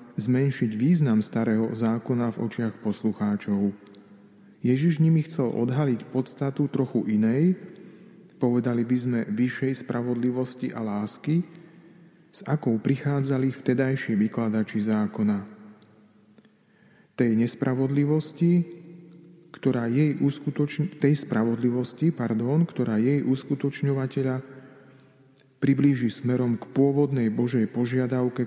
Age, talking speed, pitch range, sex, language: 40-59, 95 wpm, 110-145 Hz, male, Slovak